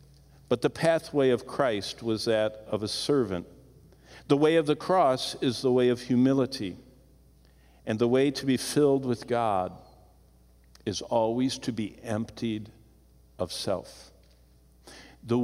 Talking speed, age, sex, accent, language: 140 wpm, 50-69, male, American, English